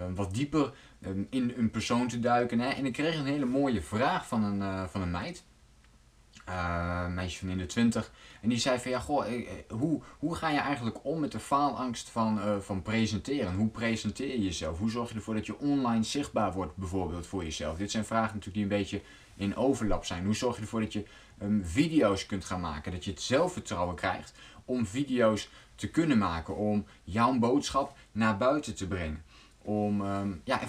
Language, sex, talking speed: Dutch, male, 190 wpm